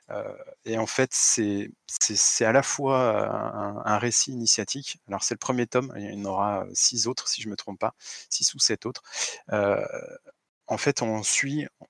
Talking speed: 200 wpm